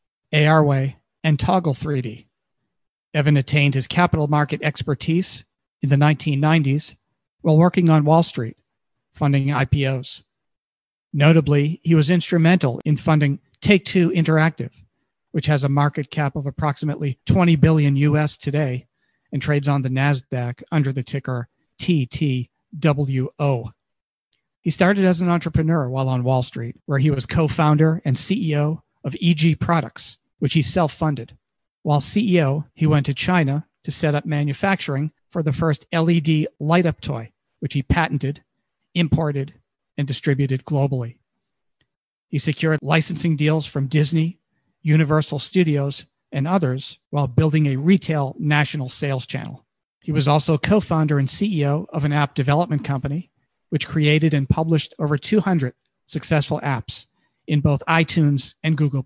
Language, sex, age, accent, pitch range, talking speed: English, male, 40-59, American, 140-160 Hz, 135 wpm